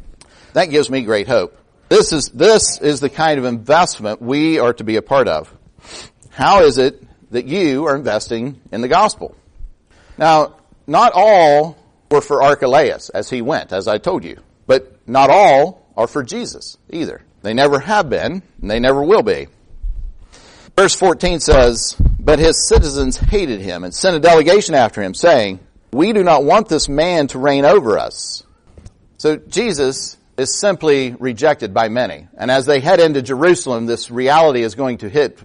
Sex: male